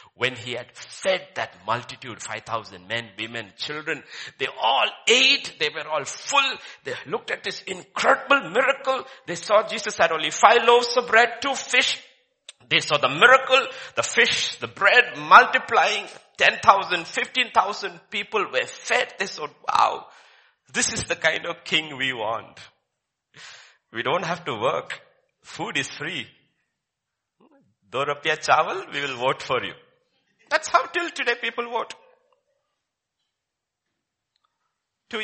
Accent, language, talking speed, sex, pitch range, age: Indian, English, 140 wpm, male, 175-275 Hz, 60-79